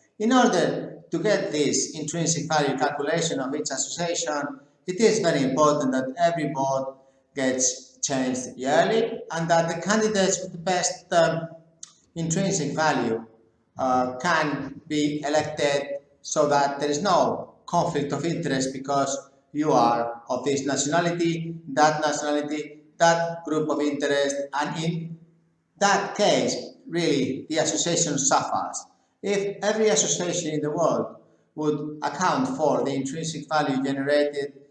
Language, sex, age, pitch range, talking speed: English, male, 60-79, 135-165 Hz, 130 wpm